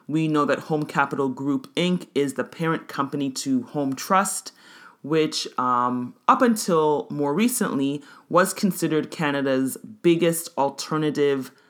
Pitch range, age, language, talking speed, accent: 130-170 Hz, 30-49, English, 130 wpm, American